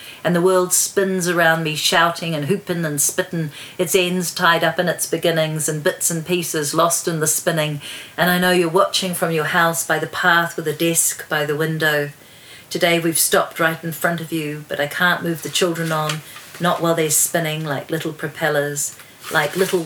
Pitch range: 155-175 Hz